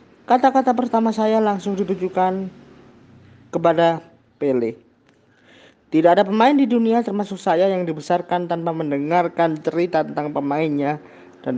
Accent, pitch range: native, 155-205 Hz